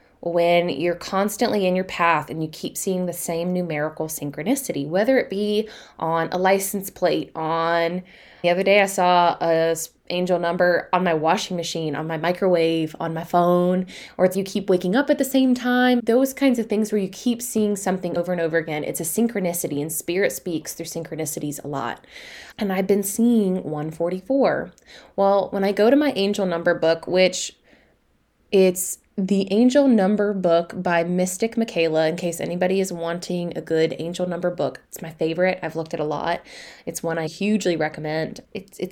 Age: 20-39